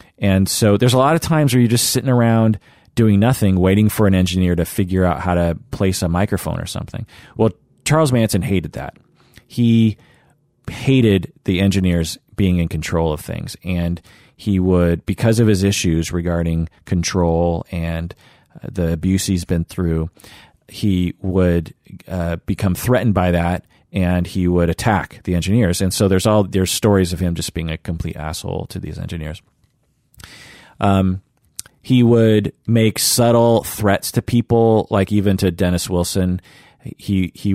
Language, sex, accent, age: English, male, American, 30-49